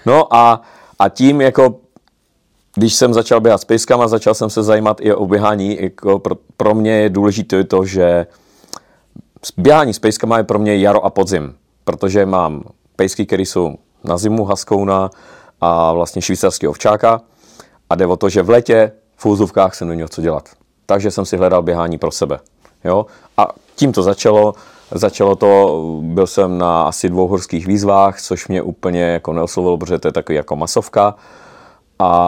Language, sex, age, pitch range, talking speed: Czech, male, 40-59, 90-105 Hz, 175 wpm